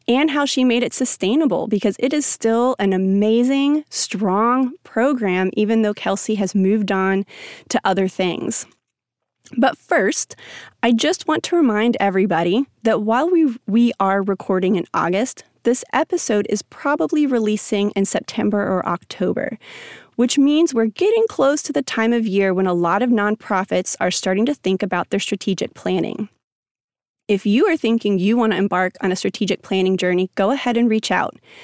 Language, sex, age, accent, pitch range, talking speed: English, female, 30-49, American, 195-245 Hz, 165 wpm